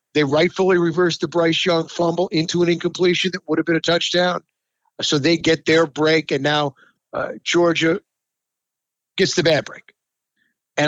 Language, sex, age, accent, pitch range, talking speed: English, male, 50-69, American, 145-180 Hz, 165 wpm